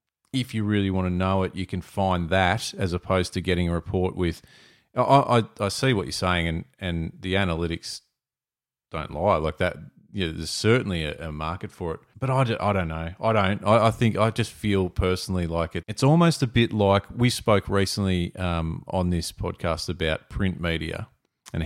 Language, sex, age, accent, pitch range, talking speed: English, male, 30-49, Australian, 85-105 Hz, 210 wpm